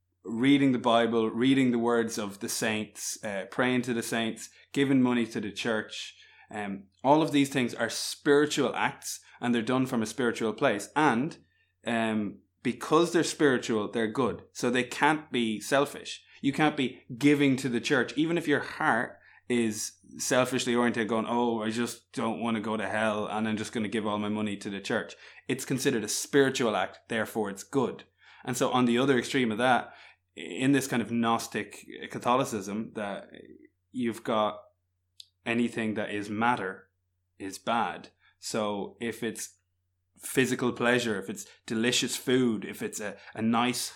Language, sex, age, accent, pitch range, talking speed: English, male, 20-39, Irish, 105-125 Hz, 175 wpm